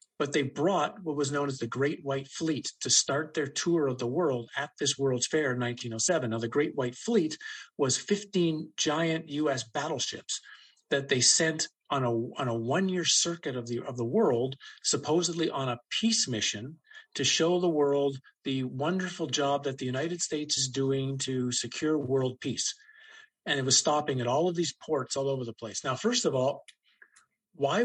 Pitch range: 130-165 Hz